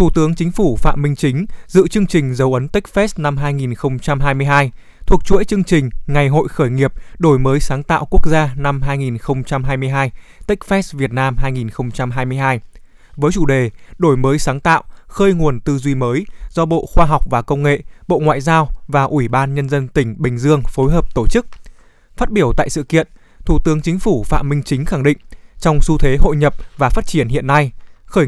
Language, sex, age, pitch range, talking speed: Vietnamese, male, 20-39, 130-165 Hz, 200 wpm